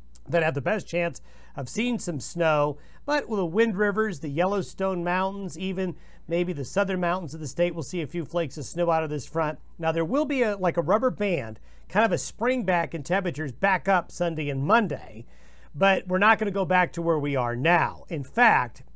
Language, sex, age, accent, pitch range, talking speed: English, male, 50-69, American, 155-200 Hz, 225 wpm